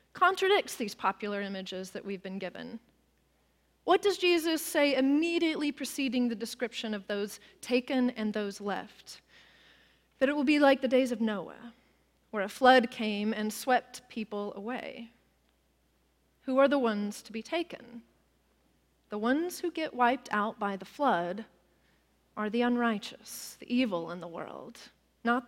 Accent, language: American, English